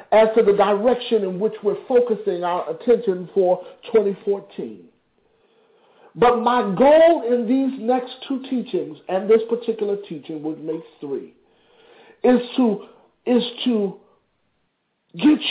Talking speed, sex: 125 wpm, male